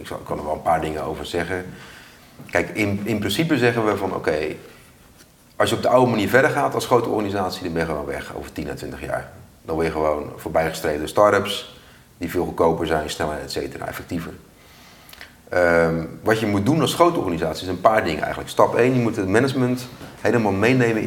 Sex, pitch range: male, 85-120 Hz